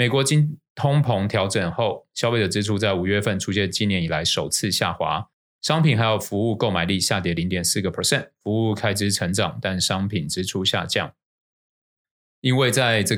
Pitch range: 95-115 Hz